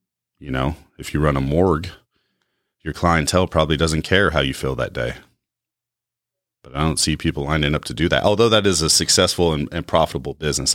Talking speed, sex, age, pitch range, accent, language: 200 wpm, male, 30-49, 80-110 Hz, American, English